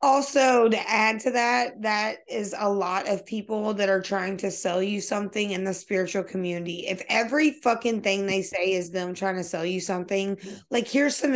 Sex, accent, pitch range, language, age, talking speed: female, American, 190-230 Hz, English, 20-39, 200 wpm